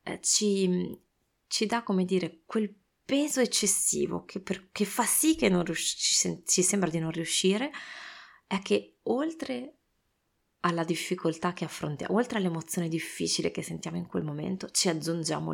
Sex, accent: female, native